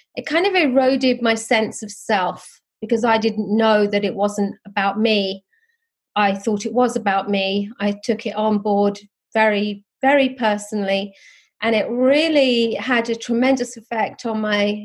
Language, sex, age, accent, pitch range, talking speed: English, female, 30-49, British, 210-250 Hz, 160 wpm